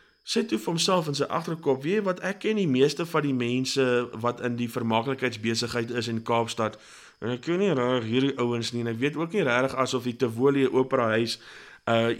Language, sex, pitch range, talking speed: English, male, 120-155 Hz, 210 wpm